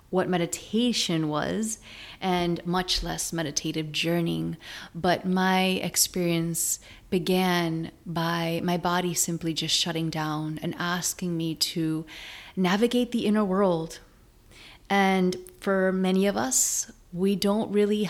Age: 30-49